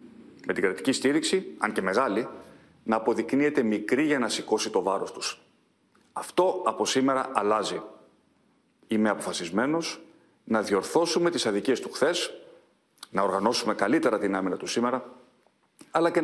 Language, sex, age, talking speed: Greek, male, 40-59, 135 wpm